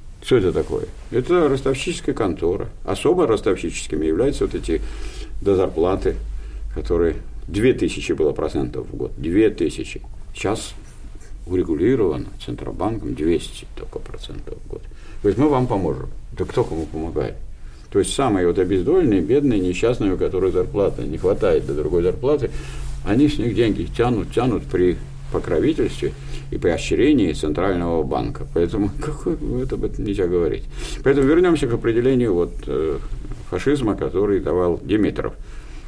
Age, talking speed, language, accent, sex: 50-69, 135 wpm, Russian, native, male